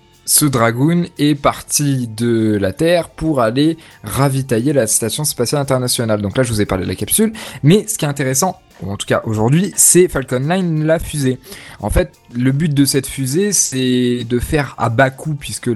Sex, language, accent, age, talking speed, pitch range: male, French, French, 20-39, 200 wpm, 115-145 Hz